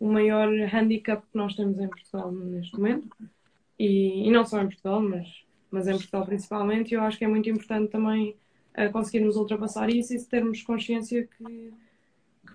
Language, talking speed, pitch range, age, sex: Portuguese, 175 wpm, 200-230 Hz, 20-39, female